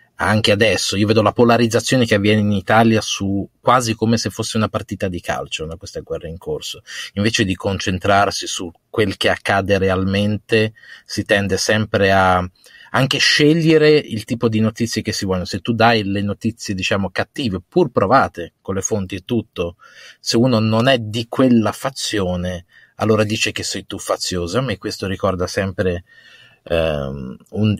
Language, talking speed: Italian, 165 wpm